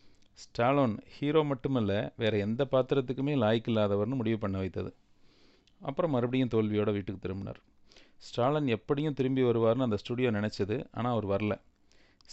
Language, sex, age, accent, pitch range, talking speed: Tamil, male, 40-59, native, 100-130 Hz, 120 wpm